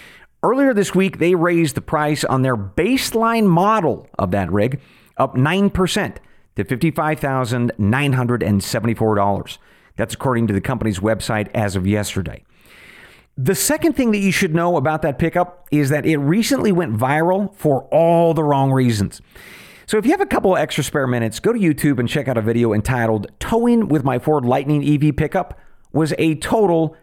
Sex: male